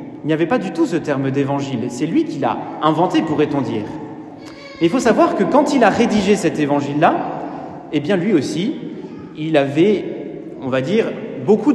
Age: 30-49